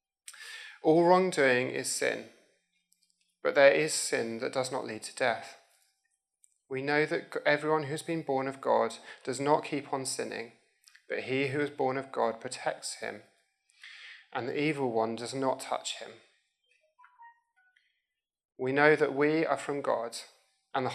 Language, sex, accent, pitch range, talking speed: English, male, British, 130-195 Hz, 160 wpm